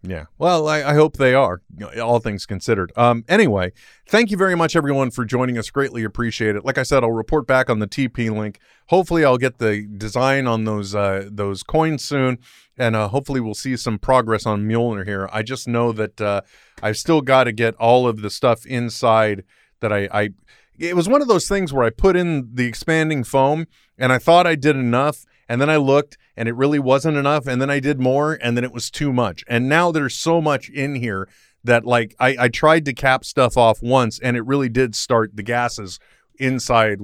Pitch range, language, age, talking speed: 105-140 Hz, English, 30-49, 220 wpm